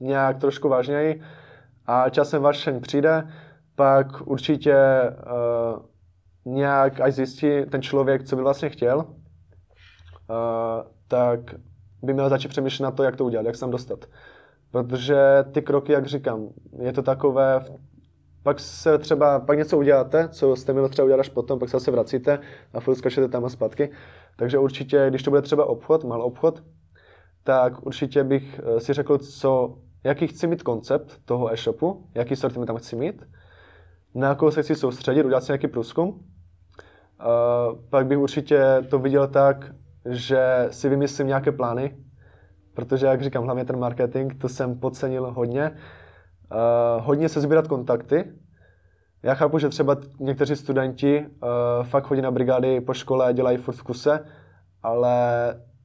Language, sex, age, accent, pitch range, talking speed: Czech, male, 20-39, native, 120-140 Hz, 155 wpm